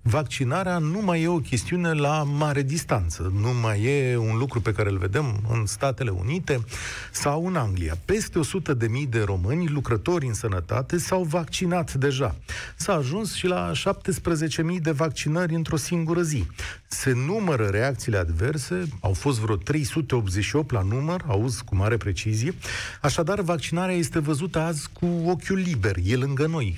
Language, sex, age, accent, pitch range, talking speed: Romanian, male, 40-59, native, 115-165 Hz, 155 wpm